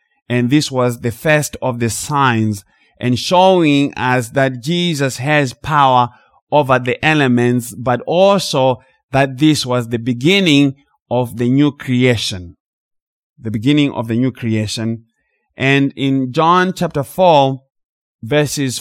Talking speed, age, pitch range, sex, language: 130 wpm, 30-49, 120-150 Hz, male, English